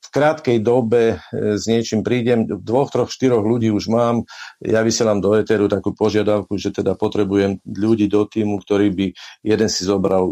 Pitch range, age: 100-110 Hz, 50-69